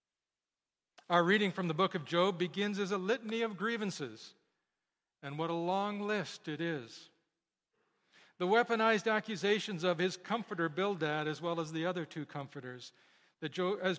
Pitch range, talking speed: 155-205 Hz, 150 wpm